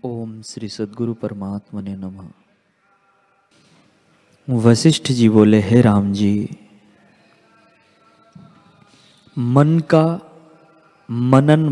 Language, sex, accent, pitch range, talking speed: Hindi, male, native, 130-195 Hz, 75 wpm